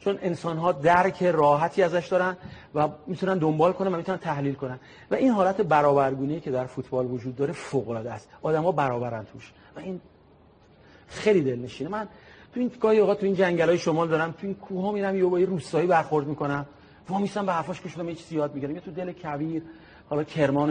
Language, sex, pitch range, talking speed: Persian, male, 145-190 Hz, 195 wpm